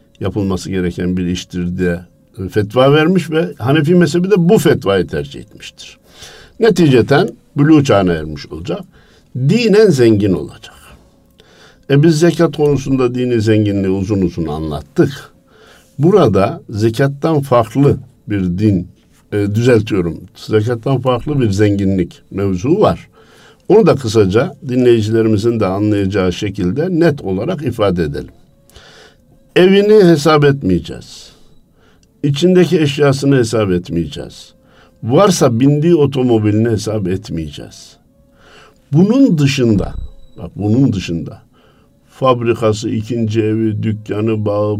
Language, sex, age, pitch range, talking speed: Turkish, male, 60-79, 100-140 Hz, 105 wpm